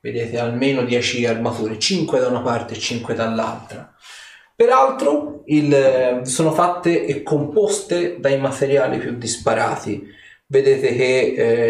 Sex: male